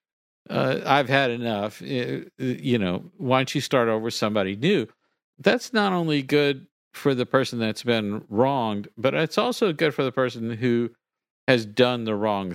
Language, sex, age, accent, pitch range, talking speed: English, male, 50-69, American, 100-135 Hz, 170 wpm